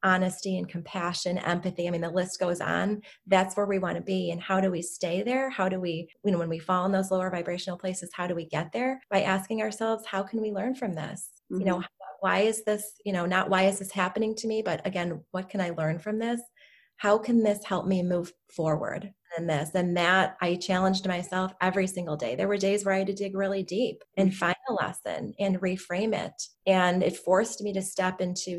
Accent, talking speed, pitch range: American, 235 wpm, 170-195 Hz